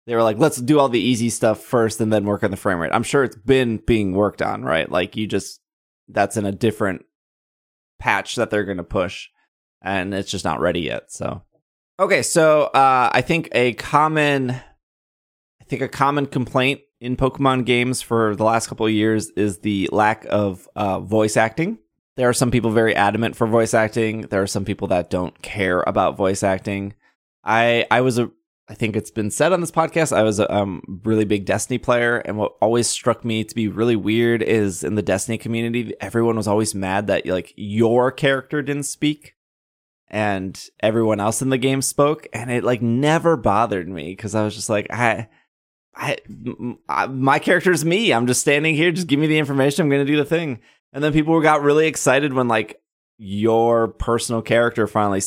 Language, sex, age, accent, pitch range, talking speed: English, male, 20-39, American, 105-130 Hz, 200 wpm